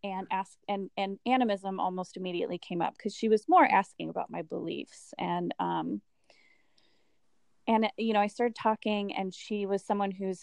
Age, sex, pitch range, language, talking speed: 30-49, female, 190-225 Hz, English, 175 wpm